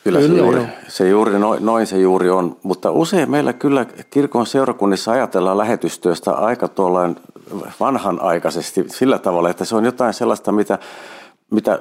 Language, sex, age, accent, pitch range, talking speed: Finnish, male, 50-69, native, 90-115 Hz, 145 wpm